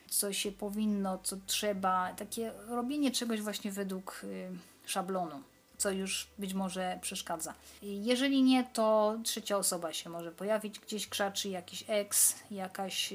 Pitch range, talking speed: 190-215 Hz, 130 wpm